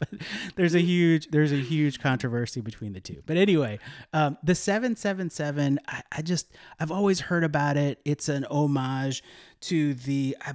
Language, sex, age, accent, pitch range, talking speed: English, male, 30-49, American, 120-150 Hz, 165 wpm